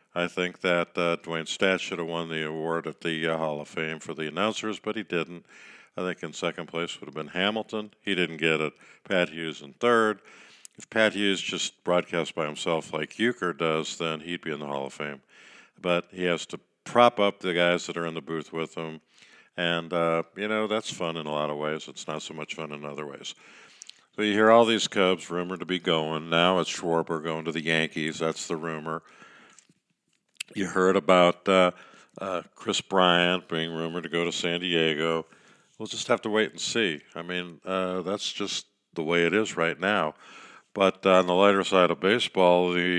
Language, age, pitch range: English, 50-69, 80-95 Hz